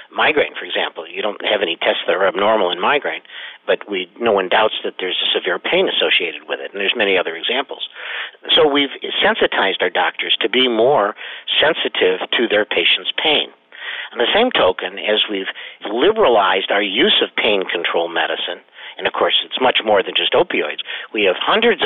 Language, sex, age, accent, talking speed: English, male, 50-69, American, 190 wpm